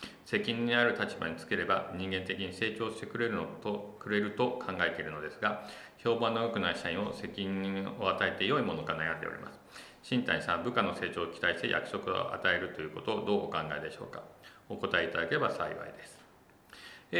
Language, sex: Japanese, male